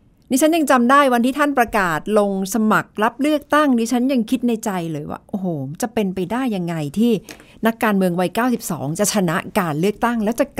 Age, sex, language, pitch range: 60-79, female, Thai, 160-230 Hz